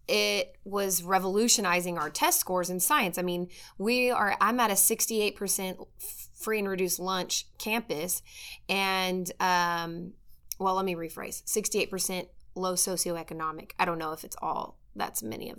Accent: American